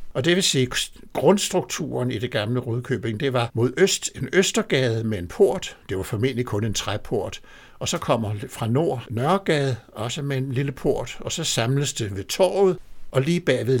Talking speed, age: 190 wpm, 60-79